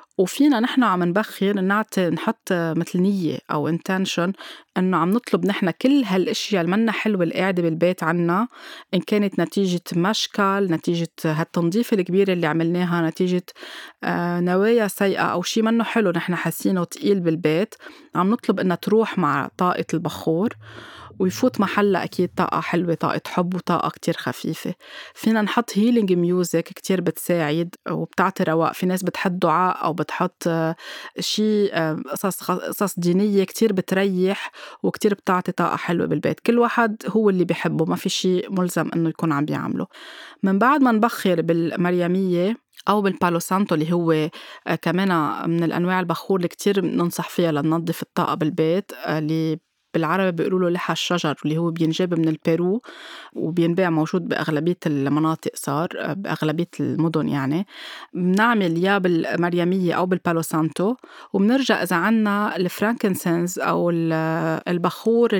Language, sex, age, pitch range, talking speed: Arabic, female, 20-39, 165-200 Hz, 135 wpm